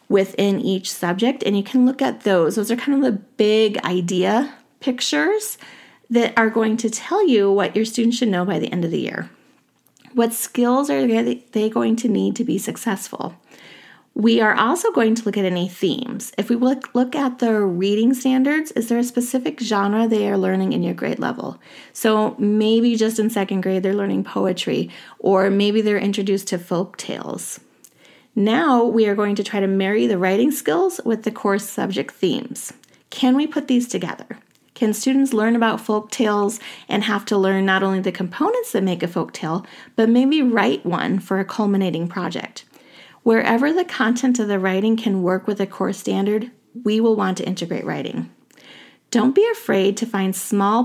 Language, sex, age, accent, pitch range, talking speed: English, female, 30-49, American, 195-245 Hz, 190 wpm